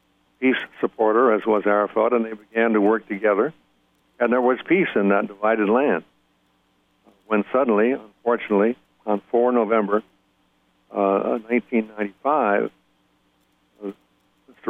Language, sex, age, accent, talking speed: English, male, 60-79, American, 110 wpm